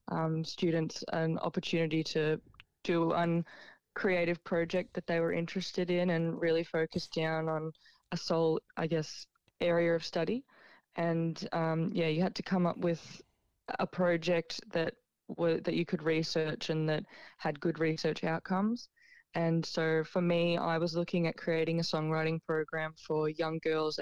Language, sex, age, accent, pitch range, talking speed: English, female, 20-39, Australian, 160-170 Hz, 160 wpm